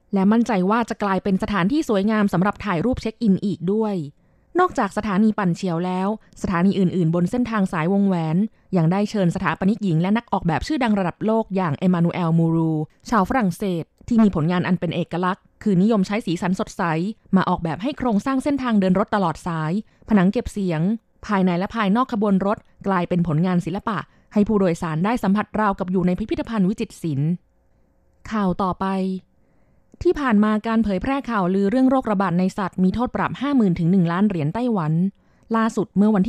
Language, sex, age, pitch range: Thai, female, 20-39, 175-220 Hz